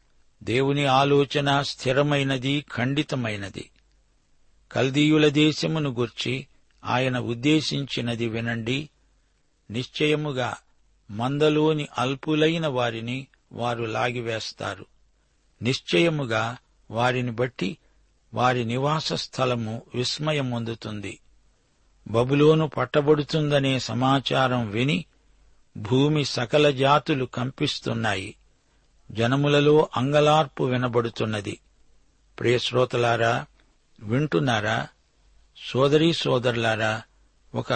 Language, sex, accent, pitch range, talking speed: Telugu, male, native, 120-145 Hz, 60 wpm